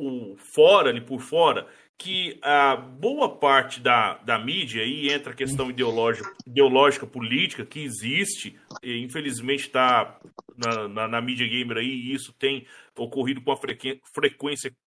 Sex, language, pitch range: male, Portuguese, 135-205 Hz